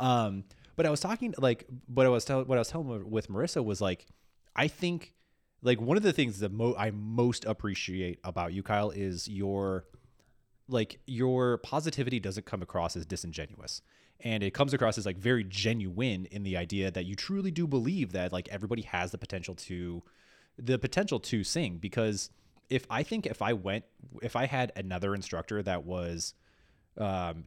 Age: 20-39